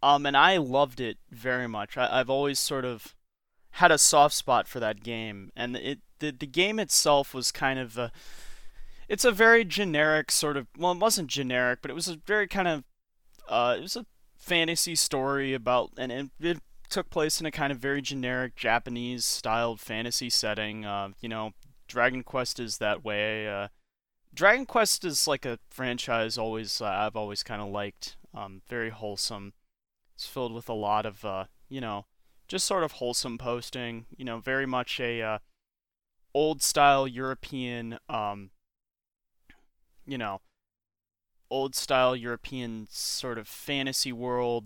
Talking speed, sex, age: 170 wpm, male, 30-49